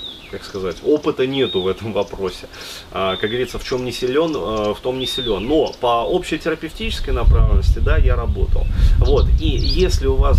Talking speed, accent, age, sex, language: 175 wpm, native, 30-49, male, Russian